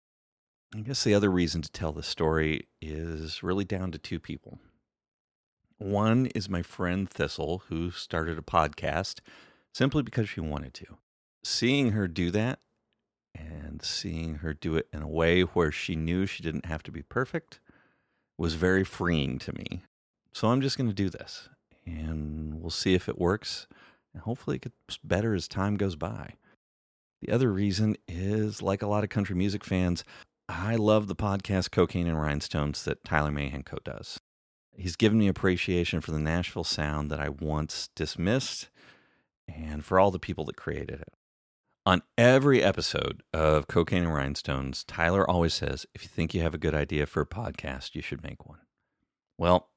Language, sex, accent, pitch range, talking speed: English, male, American, 75-100 Hz, 175 wpm